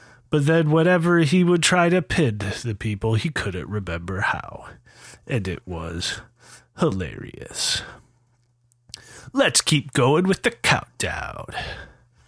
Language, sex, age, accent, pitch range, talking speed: English, male, 30-49, American, 115-160 Hz, 115 wpm